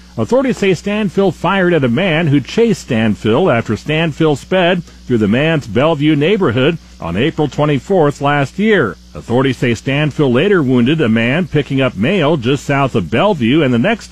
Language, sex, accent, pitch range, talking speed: English, male, American, 120-170 Hz, 170 wpm